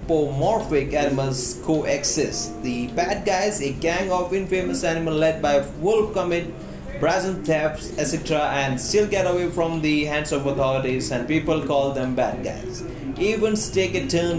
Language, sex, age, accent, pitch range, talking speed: Hindi, male, 30-49, native, 135-170 Hz, 160 wpm